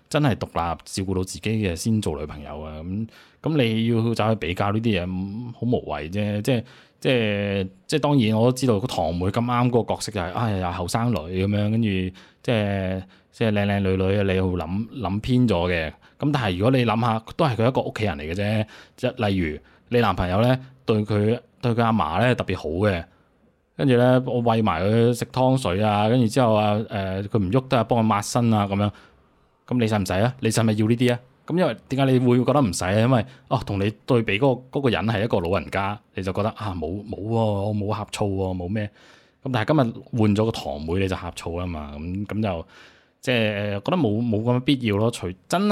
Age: 20-39